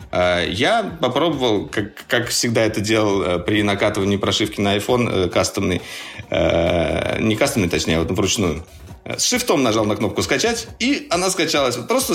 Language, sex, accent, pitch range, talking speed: Russian, male, native, 95-135 Hz, 135 wpm